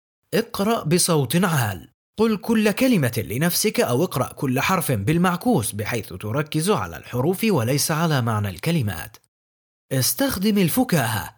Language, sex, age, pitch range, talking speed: English, male, 30-49, 115-185 Hz, 115 wpm